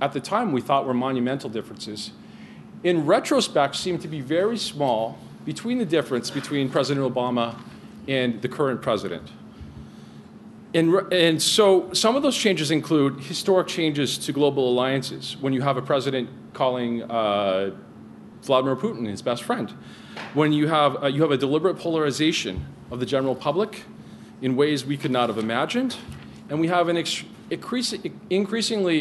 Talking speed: 160 wpm